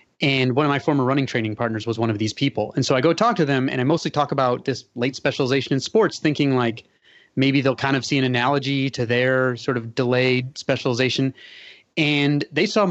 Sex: male